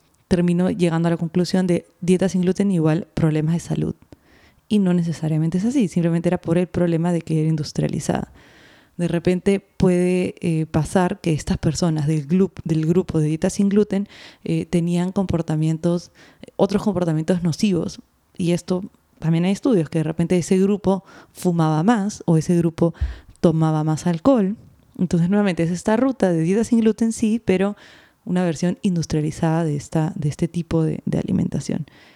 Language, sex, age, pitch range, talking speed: Spanish, female, 20-39, 165-195 Hz, 165 wpm